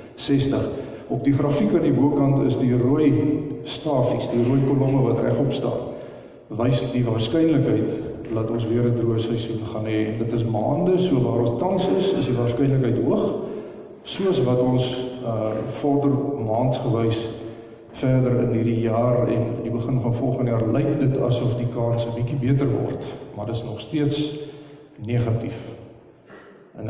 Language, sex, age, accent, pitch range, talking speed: English, male, 50-69, Dutch, 115-140 Hz, 160 wpm